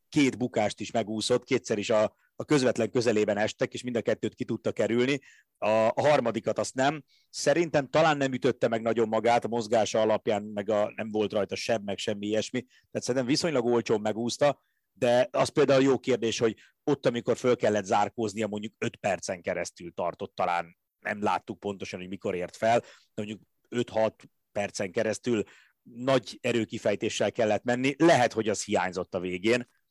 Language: Hungarian